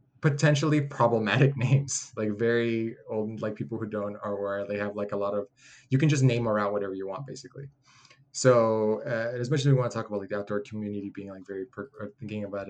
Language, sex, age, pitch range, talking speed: English, male, 20-39, 100-130 Hz, 210 wpm